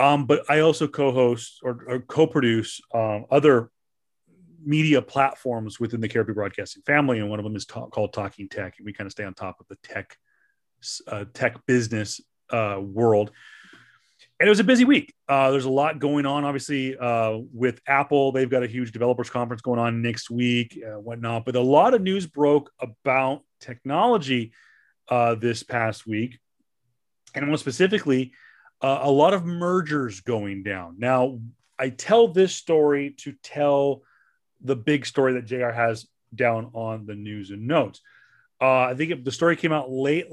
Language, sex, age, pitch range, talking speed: English, male, 30-49, 120-145 Hz, 175 wpm